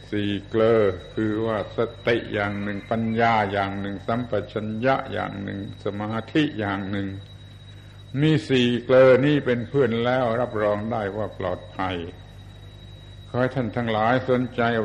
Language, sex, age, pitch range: Thai, male, 70-89, 100-115 Hz